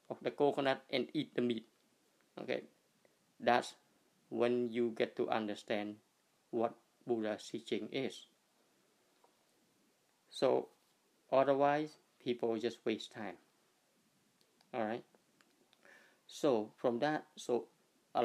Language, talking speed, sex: English, 100 wpm, male